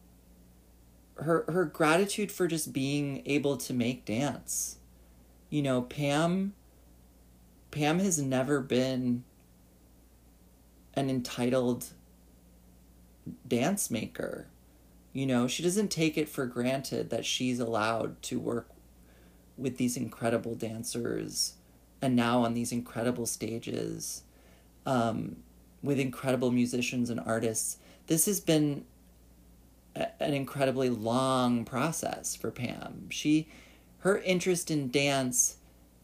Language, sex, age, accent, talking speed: English, male, 30-49, American, 105 wpm